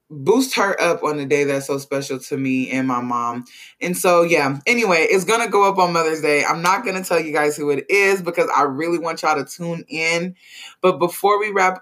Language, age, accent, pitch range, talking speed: English, 20-39, American, 150-190 Hz, 245 wpm